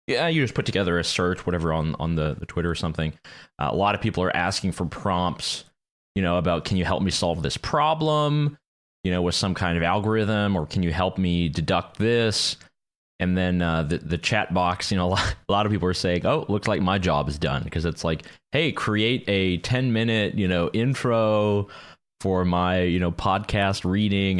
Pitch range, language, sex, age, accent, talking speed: 85-100 Hz, English, male, 30-49, American, 215 wpm